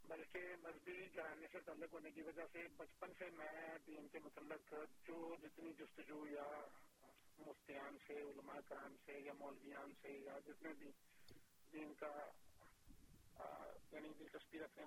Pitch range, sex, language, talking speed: 150-170 Hz, male, Urdu, 135 wpm